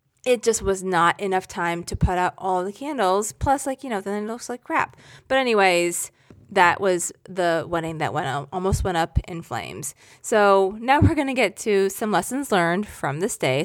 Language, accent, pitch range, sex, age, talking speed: English, American, 170-230 Hz, female, 30-49, 200 wpm